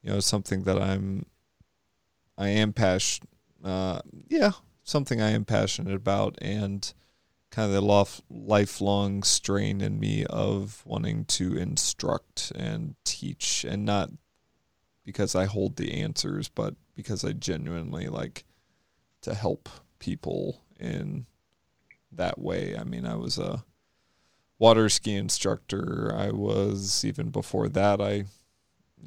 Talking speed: 125 wpm